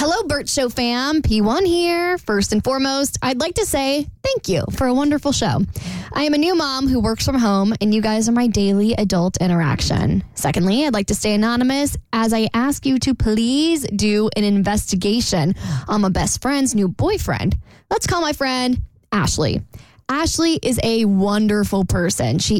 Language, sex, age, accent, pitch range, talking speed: English, female, 10-29, American, 205-280 Hz, 180 wpm